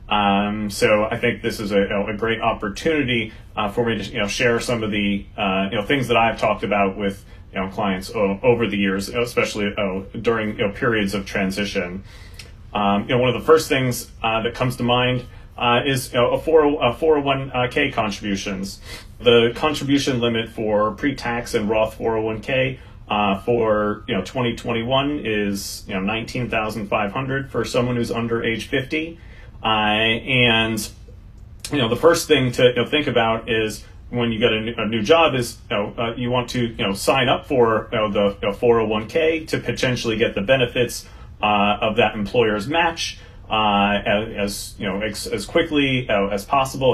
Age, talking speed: 40-59, 175 wpm